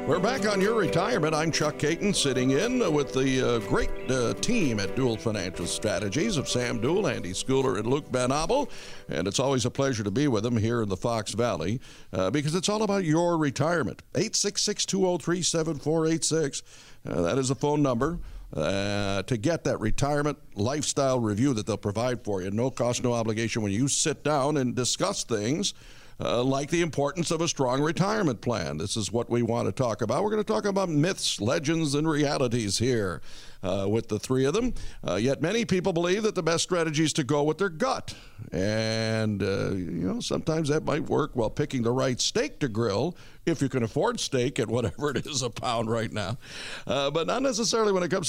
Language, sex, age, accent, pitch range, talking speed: English, male, 60-79, American, 115-160 Hz, 200 wpm